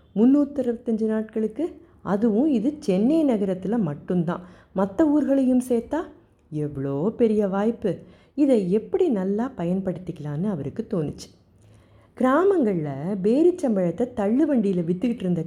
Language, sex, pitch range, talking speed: Tamil, female, 170-245 Hz, 90 wpm